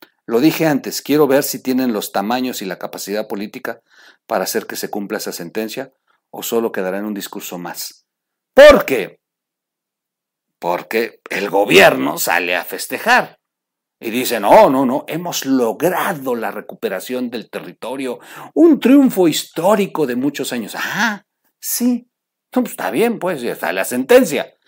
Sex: male